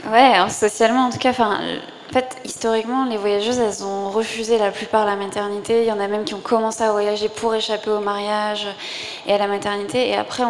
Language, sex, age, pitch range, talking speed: French, female, 20-39, 205-230 Hz, 215 wpm